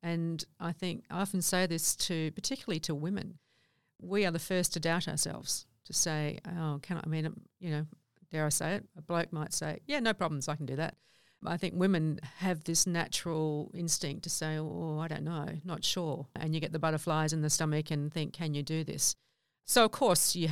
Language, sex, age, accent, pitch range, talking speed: English, female, 50-69, Australian, 150-170 Hz, 220 wpm